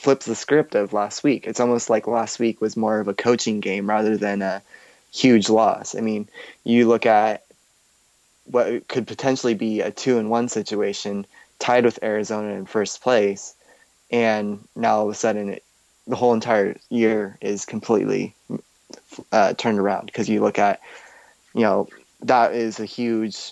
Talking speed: 170 wpm